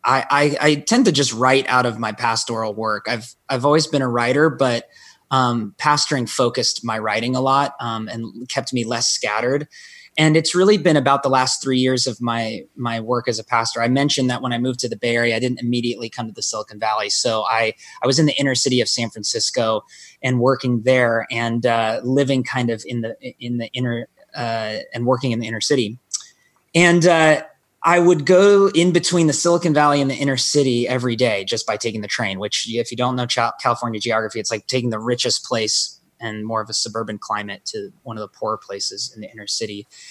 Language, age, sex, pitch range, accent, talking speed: English, 20-39, male, 115-135 Hz, American, 220 wpm